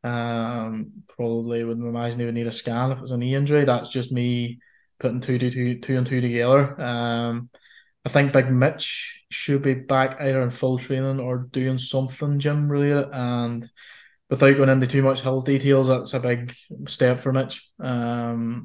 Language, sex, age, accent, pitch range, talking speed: English, male, 20-39, British, 120-135 Hz, 185 wpm